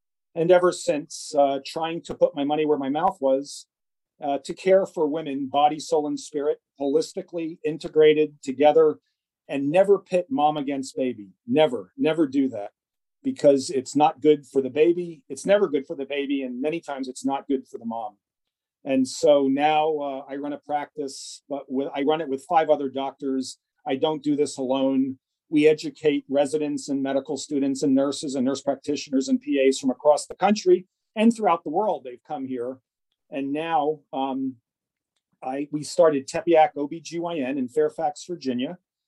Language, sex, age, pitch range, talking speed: English, male, 40-59, 135-165 Hz, 170 wpm